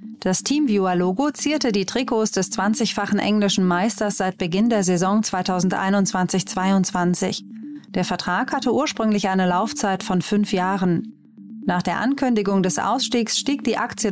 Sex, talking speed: female, 135 wpm